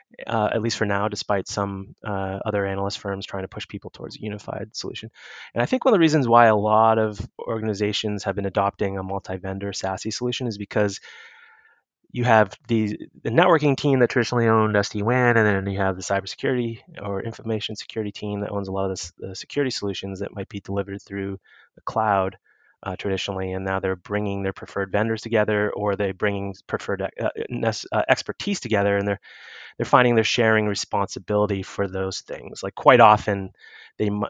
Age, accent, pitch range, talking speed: 20-39, American, 95-110 Hz, 190 wpm